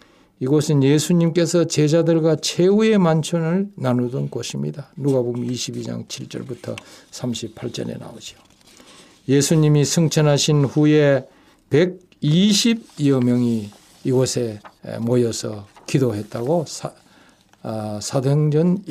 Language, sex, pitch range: Korean, male, 115-155 Hz